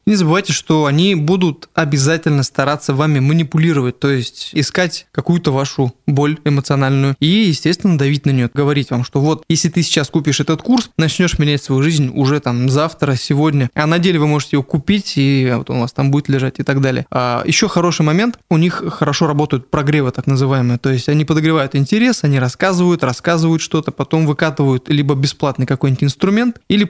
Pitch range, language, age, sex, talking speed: 140-165 Hz, Russian, 20-39, male, 185 wpm